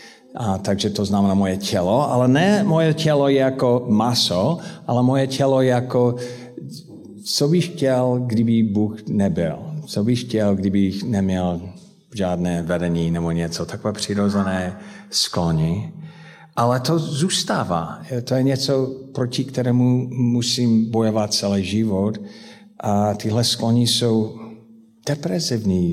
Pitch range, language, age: 105-140 Hz, Czech, 50-69